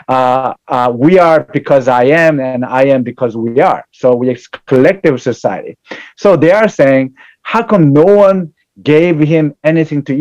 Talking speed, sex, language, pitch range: 175 wpm, male, English, 130-165 Hz